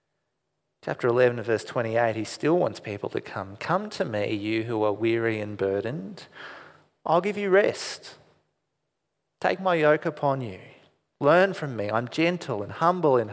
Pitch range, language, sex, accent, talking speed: 115-155 Hz, English, male, Australian, 160 wpm